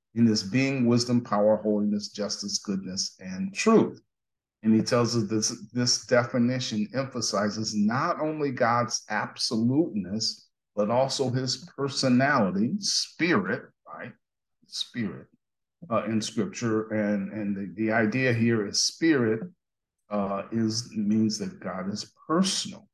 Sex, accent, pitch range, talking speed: male, American, 110-140 Hz, 125 wpm